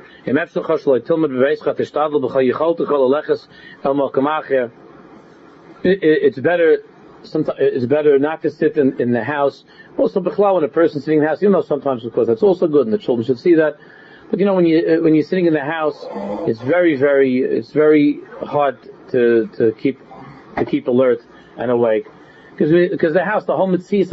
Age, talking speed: 40-59, 155 wpm